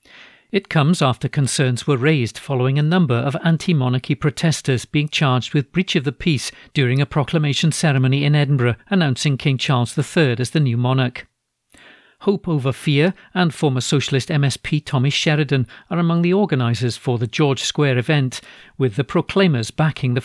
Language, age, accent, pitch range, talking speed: English, 50-69, British, 130-155 Hz, 165 wpm